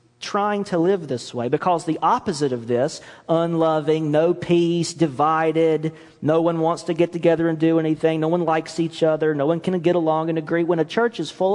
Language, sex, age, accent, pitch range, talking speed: English, male, 40-59, American, 120-160 Hz, 210 wpm